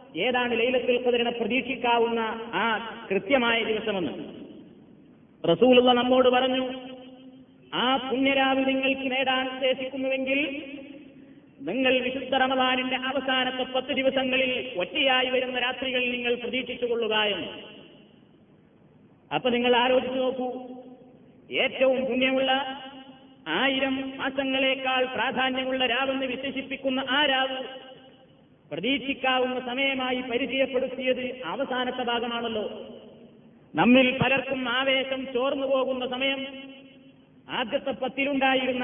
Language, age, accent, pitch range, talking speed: Malayalam, 30-49, native, 250-265 Hz, 80 wpm